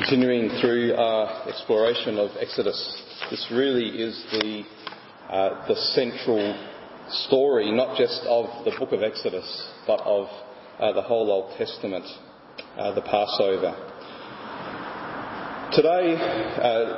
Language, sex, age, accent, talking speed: English, male, 40-59, Australian, 115 wpm